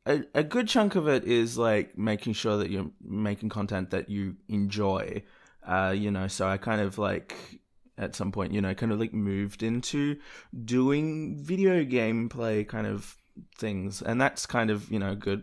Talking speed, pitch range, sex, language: 185 wpm, 100-130 Hz, male, English